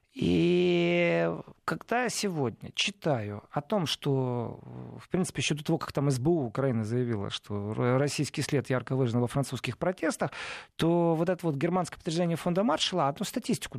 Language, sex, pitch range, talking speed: Russian, male, 130-175 Hz, 155 wpm